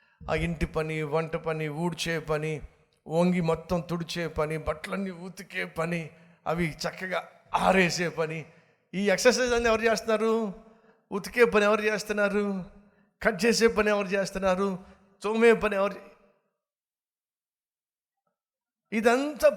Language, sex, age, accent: Telugu, male, 60-79, native